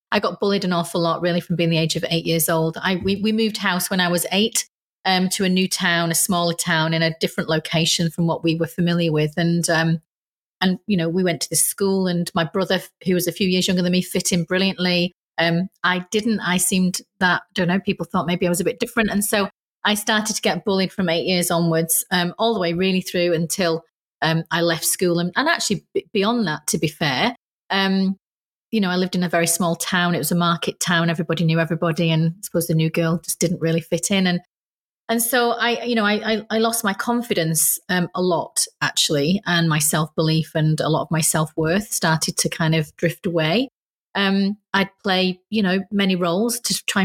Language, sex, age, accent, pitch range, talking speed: English, female, 30-49, British, 170-200 Hz, 230 wpm